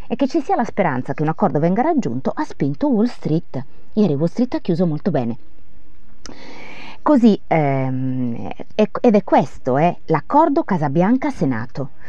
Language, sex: Italian, female